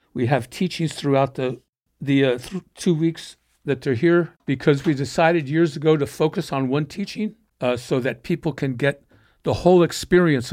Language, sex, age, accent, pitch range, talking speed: English, male, 60-79, American, 135-175 Hz, 180 wpm